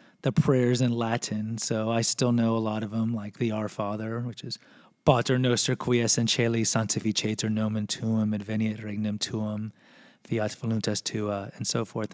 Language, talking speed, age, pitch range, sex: English, 165 wpm, 30-49, 115-145 Hz, male